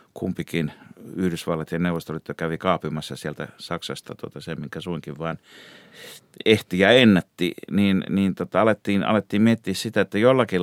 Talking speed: 140 wpm